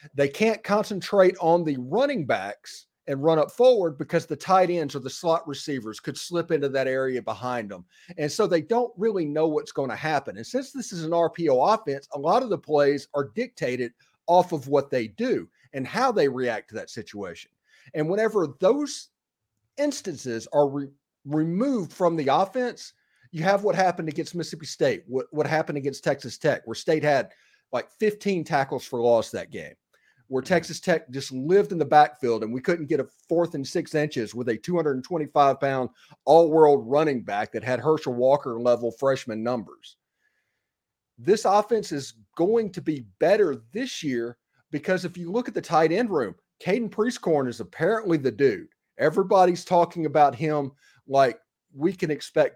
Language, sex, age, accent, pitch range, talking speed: English, male, 40-59, American, 135-180 Hz, 175 wpm